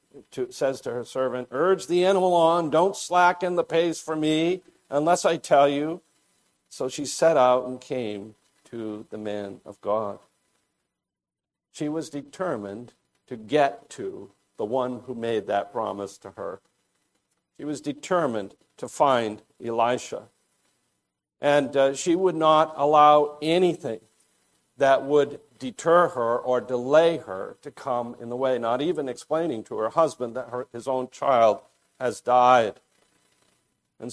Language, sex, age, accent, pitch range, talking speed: English, male, 50-69, American, 125-150 Hz, 140 wpm